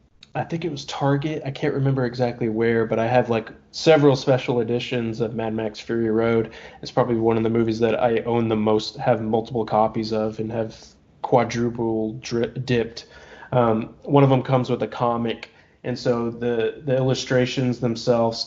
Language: English